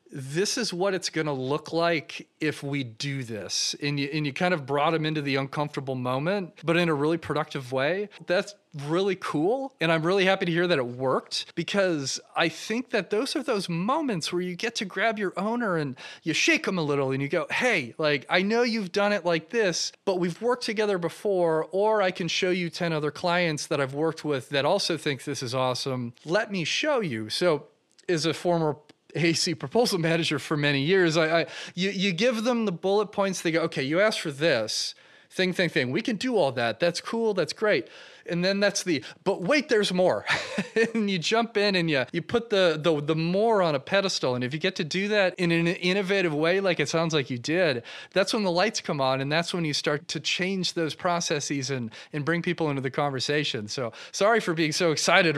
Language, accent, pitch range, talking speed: English, American, 145-190 Hz, 225 wpm